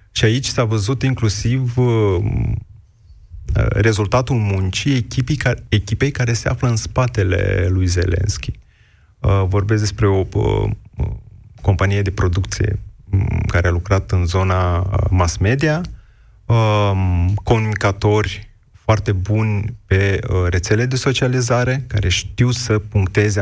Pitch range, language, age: 100-115 Hz, Romanian, 30-49